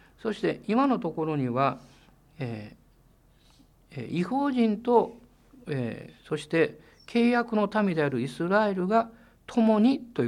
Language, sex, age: Japanese, male, 50-69